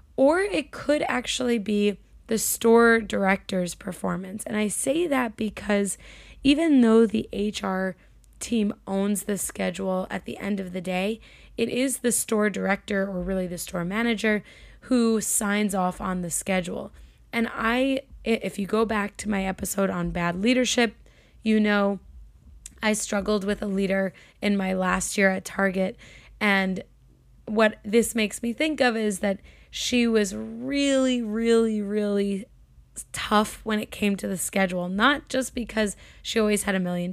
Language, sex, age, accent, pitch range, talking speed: English, female, 20-39, American, 190-230 Hz, 160 wpm